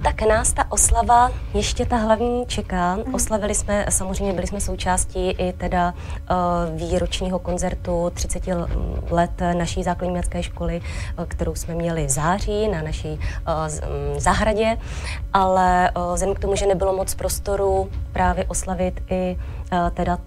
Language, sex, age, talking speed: Czech, female, 20-39, 130 wpm